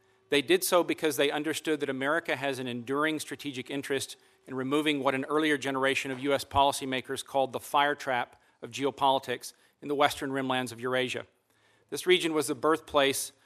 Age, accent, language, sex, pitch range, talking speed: 40-59, American, English, male, 130-150 Hz, 175 wpm